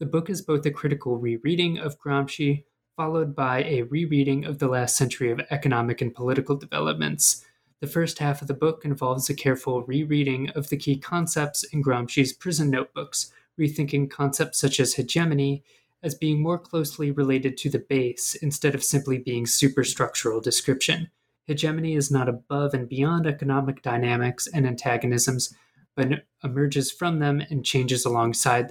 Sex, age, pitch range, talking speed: male, 20-39, 125-150 Hz, 160 wpm